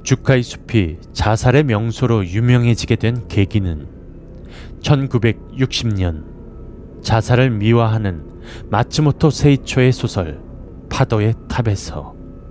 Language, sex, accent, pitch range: Korean, male, native, 90-130 Hz